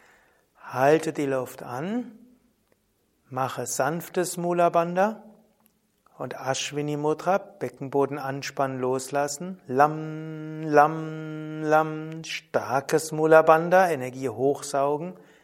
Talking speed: 80 wpm